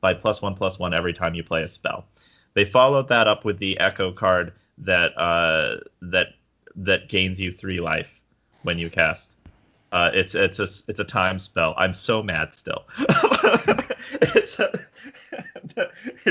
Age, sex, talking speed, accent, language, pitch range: 30-49, male, 160 wpm, American, English, 90-110 Hz